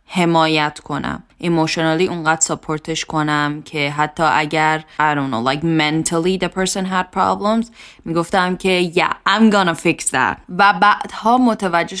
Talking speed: 140 wpm